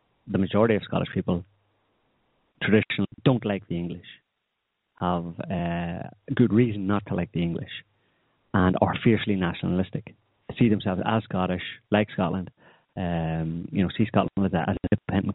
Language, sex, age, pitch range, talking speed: English, male, 30-49, 90-110 Hz, 155 wpm